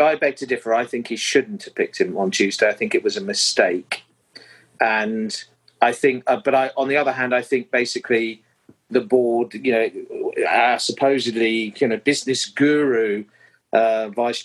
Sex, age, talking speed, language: male, 40-59, 185 wpm, English